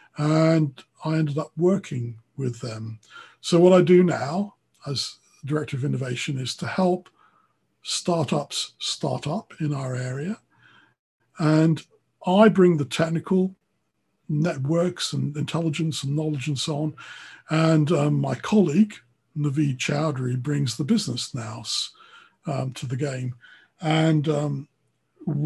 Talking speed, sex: 125 wpm, male